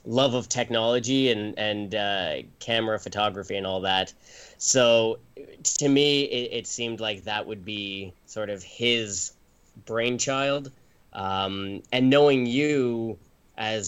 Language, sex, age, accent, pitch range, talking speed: English, male, 20-39, American, 110-135 Hz, 130 wpm